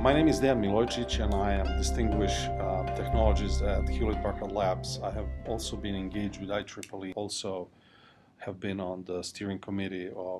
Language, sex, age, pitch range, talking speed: English, male, 40-59, 90-105 Hz, 165 wpm